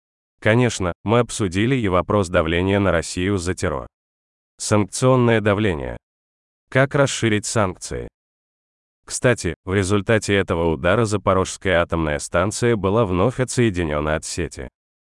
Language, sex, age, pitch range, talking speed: Russian, male, 30-49, 85-110 Hz, 110 wpm